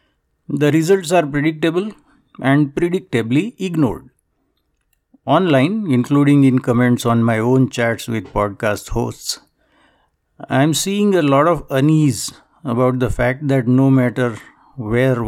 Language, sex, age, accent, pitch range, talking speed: English, male, 60-79, Indian, 125-155 Hz, 125 wpm